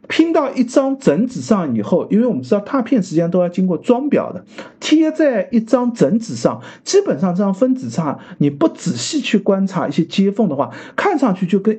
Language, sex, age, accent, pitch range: Chinese, male, 50-69, native, 175-260 Hz